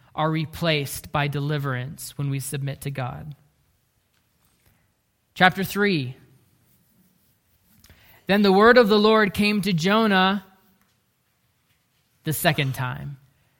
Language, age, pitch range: English, 20-39, 140-200 Hz